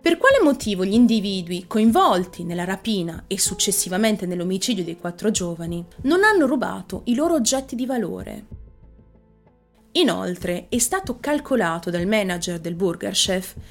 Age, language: 30-49, Italian